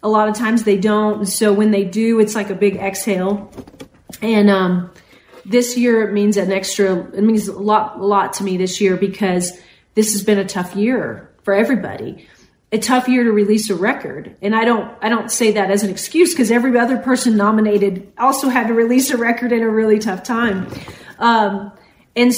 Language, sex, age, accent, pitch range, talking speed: English, female, 40-59, American, 195-230 Hz, 205 wpm